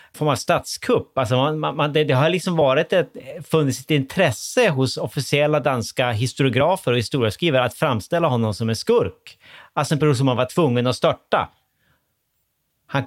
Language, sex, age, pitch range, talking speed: Swedish, male, 30-49, 115-145 Hz, 160 wpm